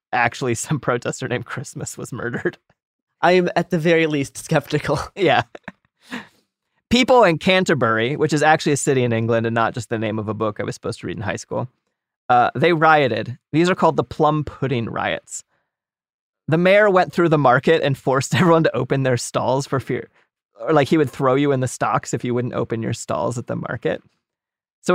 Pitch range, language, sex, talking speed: 130-170 Hz, English, male, 205 wpm